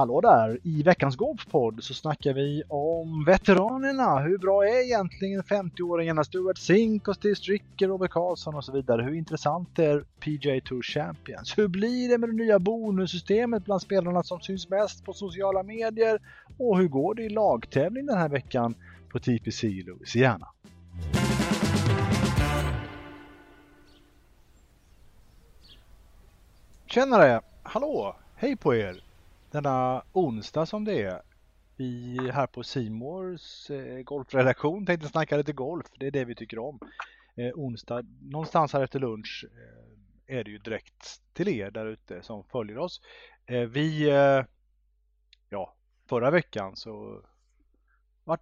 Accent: Norwegian